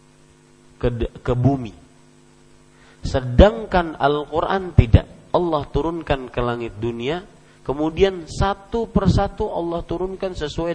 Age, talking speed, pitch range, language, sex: 40-59, 95 wpm, 105-170 Hz, Malay, male